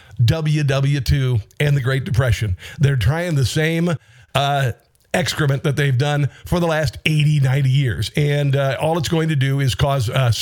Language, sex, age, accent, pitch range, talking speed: English, male, 50-69, American, 125-160 Hz, 175 wpm